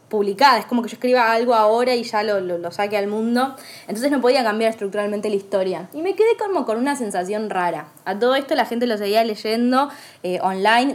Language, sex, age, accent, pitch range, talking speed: Spanish, female, 20-39, Argentinian, 205-260 Hz, 225 wpm